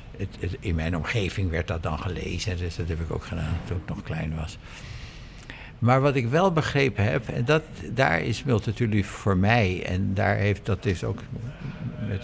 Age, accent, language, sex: 60-79, Dutch, Dutch, male